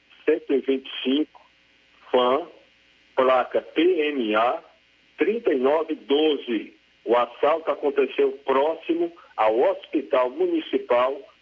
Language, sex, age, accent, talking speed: Portuguese, male, 50-69, Brazilian, 65 wpm